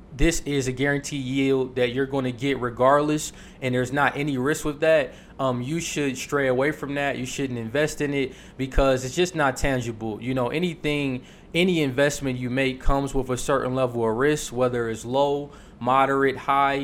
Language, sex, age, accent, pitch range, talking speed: English, male, 20-39, American, 125-140 Hz, 190 wpm